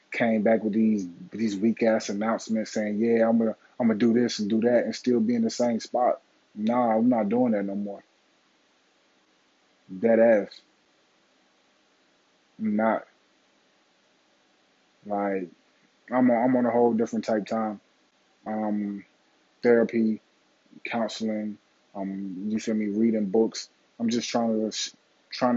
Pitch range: 105-120 Hz